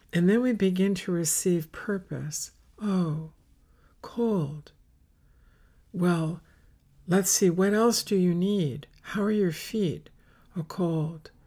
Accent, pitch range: American, 140-180 Hz